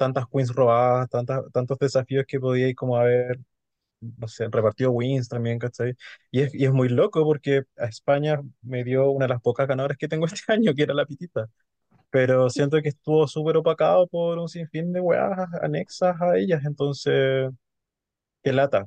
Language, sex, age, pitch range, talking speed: Spanish, male, 20-39, 120-150 Hz, 185 wpm